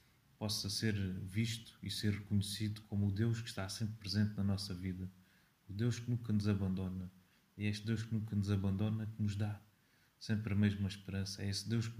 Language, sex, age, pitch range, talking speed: Portuguese, male, 30-49, 100-110 Hz, 200 wpm